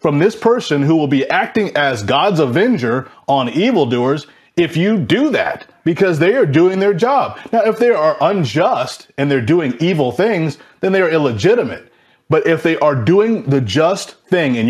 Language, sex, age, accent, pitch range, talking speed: English, male, 30-49, American, 135-180 Hz, 185 wpm